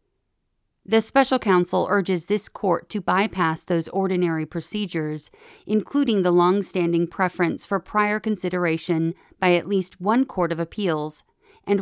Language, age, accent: English, 40-59, American